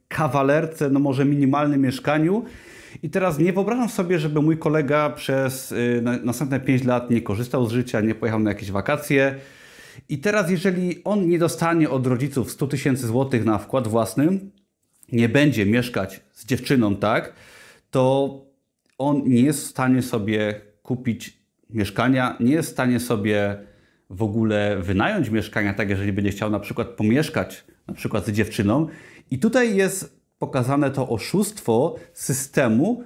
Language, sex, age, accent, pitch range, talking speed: Polish, male, 30-49, native, 115-150 Hz, 150 wpm